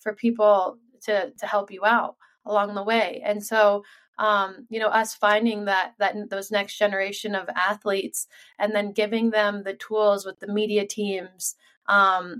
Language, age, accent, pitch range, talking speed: English, 20-39, American, 195-230 Hz, 170 wpm